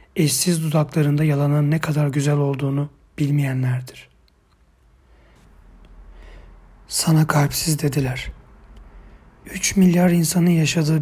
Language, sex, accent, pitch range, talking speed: Turkish, male, native, 135-160 Hz, 80 wpm